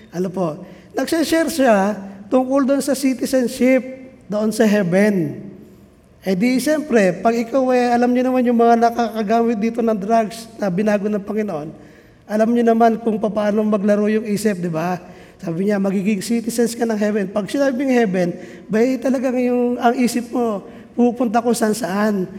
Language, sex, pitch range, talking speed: Filipino, male, 210-255 Hz, 160 wpm